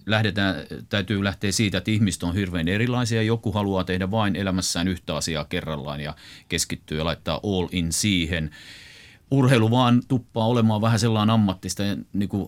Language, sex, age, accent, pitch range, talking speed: Finnish, male, 30-49, native, 90-115 Hz, 160 wpm